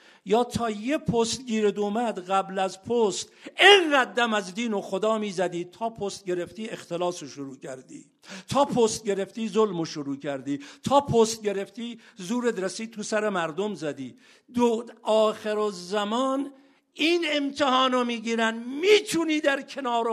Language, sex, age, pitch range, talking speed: Persian, male, 50-69, 170-230 Hz, 140 wpm